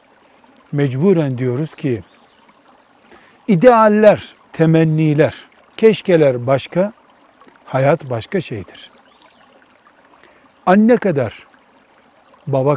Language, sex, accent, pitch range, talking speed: Turkish, male, native, 135-185 Hz, 60 wpm